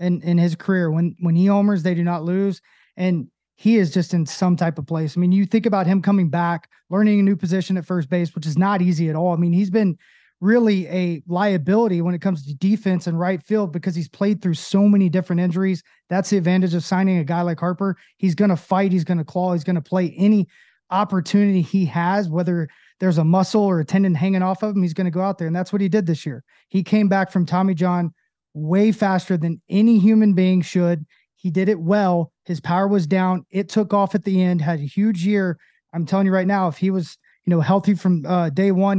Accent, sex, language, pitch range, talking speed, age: American, male, English, 175-195 Hz, 245 wpm, 20-39